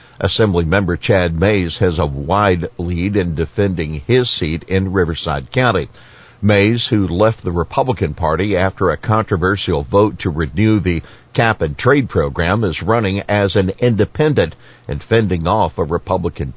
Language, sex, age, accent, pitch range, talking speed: English, male, 60-79, American, 85-110 Hz, 150 wpm